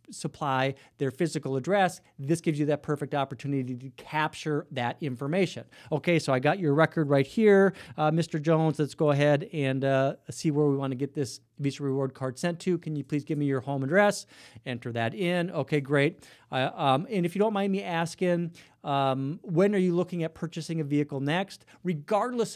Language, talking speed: English, 195 wpm